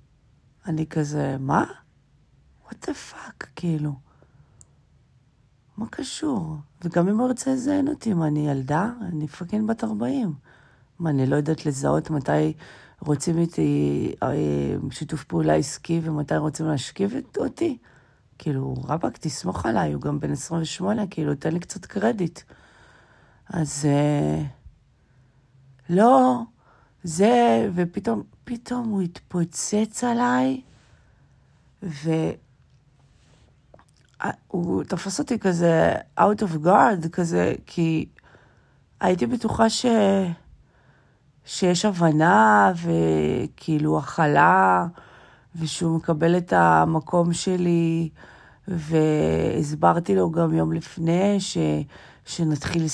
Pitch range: 135-190 Hz